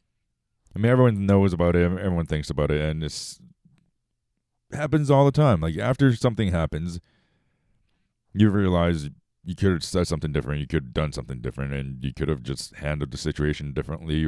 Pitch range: 75-105 Hz